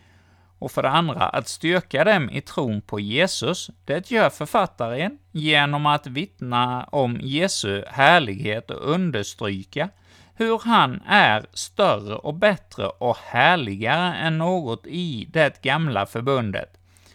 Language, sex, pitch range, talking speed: Swedish, male, 100-165 Hz, 125 wpm